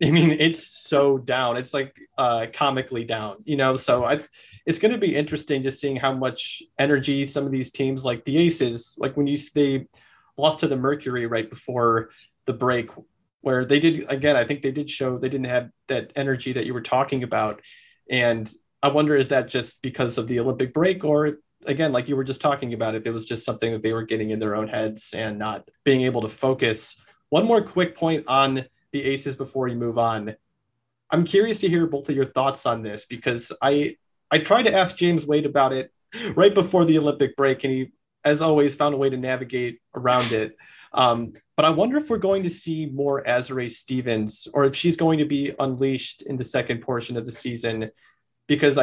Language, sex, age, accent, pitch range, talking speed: English, male, 30-49, American, 125-150 Hz, 215 wpm